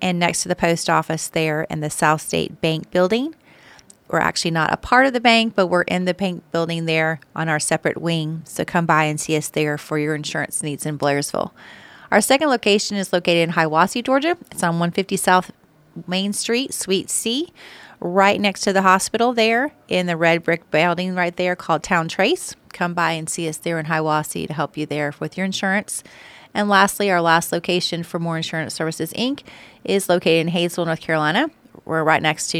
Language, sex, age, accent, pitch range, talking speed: English, female, 30-49, American, 160-195 Hz, 205 wpm